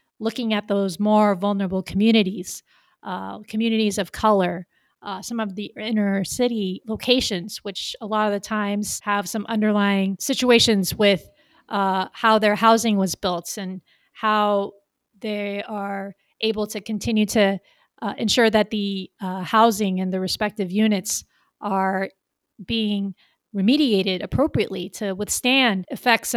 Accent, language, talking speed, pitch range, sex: American, English, 135 wpm, 200-235 Hz, female